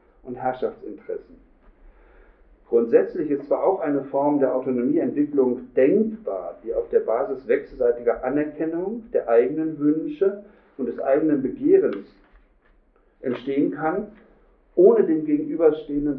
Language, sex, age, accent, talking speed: German, male, 50-69, German, 110 wpm